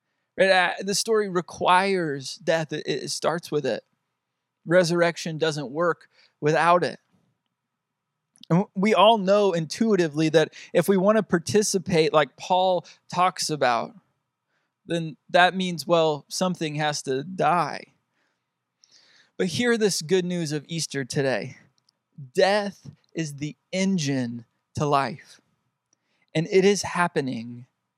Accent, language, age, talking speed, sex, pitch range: American, English, 20-39, 120 wpm, male, 150-185 Hz